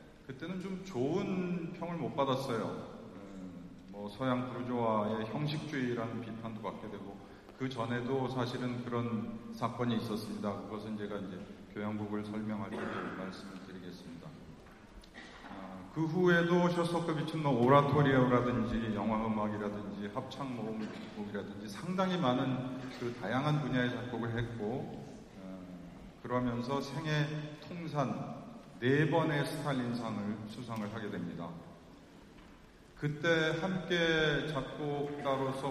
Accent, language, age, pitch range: native, Korean, 40-59, 105-145 Hz